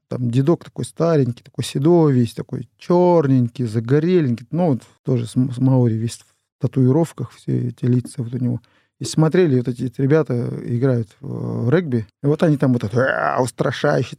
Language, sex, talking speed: Russian, male, 175 wpm